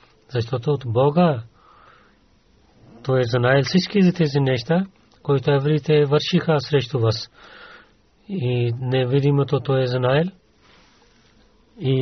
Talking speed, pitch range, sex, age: 100 wpm, 125-150 Hz, male, 40-59